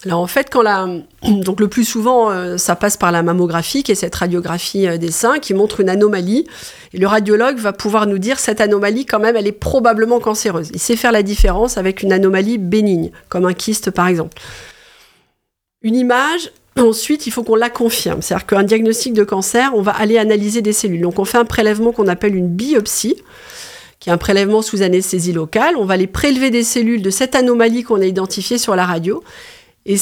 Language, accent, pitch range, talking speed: French, French, 195-240 Hz, 210 wpm